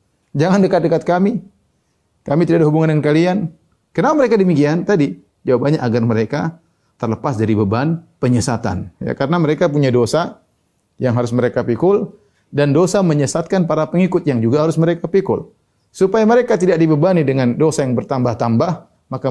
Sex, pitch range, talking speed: male, 125-165 Hz, 150 wpm